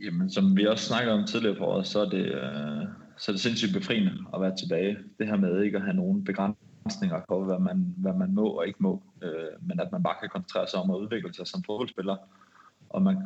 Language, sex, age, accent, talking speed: Danish, male, 20-39, native, 235 wpm